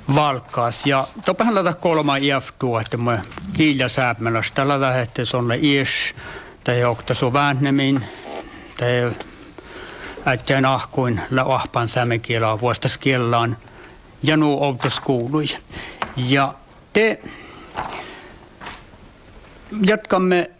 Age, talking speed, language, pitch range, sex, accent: 60-79, 85 wpm, Czech, 125-145 Hz, male, Finnish